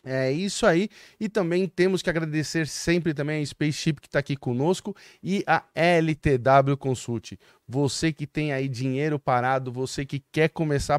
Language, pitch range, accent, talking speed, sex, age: Portuguese, 135-165 Hz, Brazilian, 165 wpm, male, 20-39